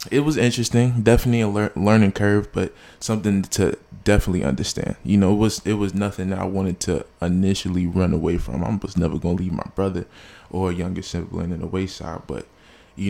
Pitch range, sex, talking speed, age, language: 85-100 Hz, male, 195 wpm, 20-39, English